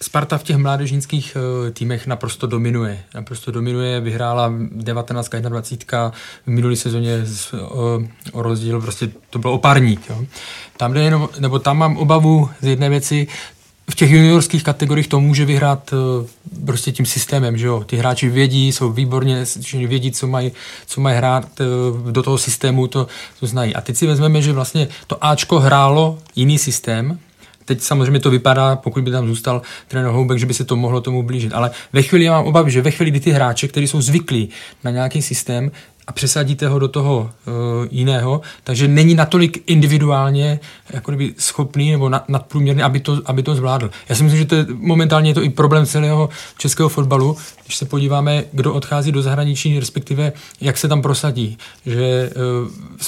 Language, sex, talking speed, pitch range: Czech, male, 175 wpm, 125-145 Hz